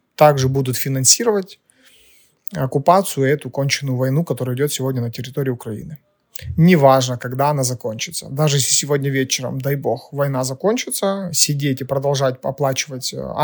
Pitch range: 135-160 Hz